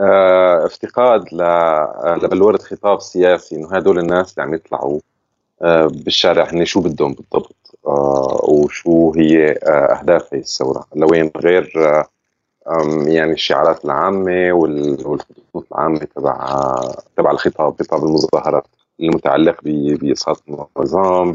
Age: 30-49